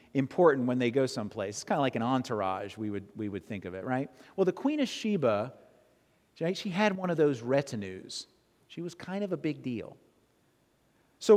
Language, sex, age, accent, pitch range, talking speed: English, male, 40-59, American, 130-185 Hz, 200 wpm